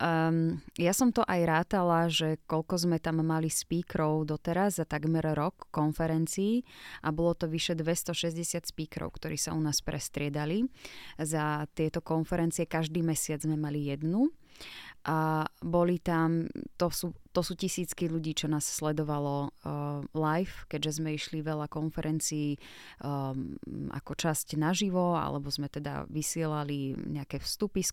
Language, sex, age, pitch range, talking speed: Slovak, female, 20-39, 150-170 Hz, 140 wpm